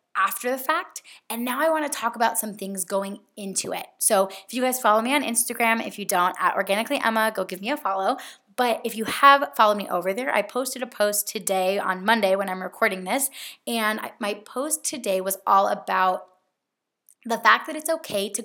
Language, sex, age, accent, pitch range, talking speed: English, female, 20-39, American, 190-245 Hz, 215 wpm